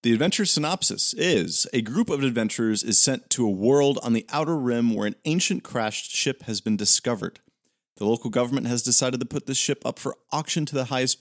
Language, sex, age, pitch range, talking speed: English, male, 30-49, 100-140 Hz, 215 wpm